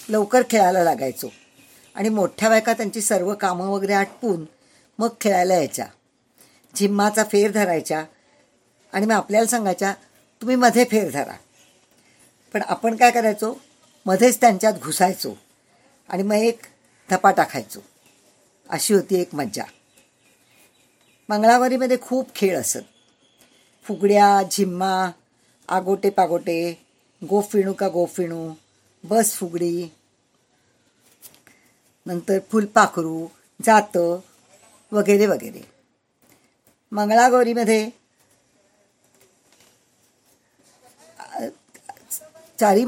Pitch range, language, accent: 185-225 Hz, Marathi, native